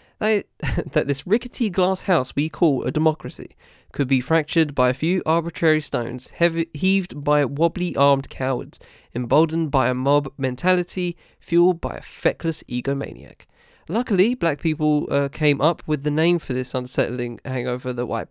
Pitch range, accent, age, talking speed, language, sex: 130-170 Hz, British, 10-29, 155 wpm, English, male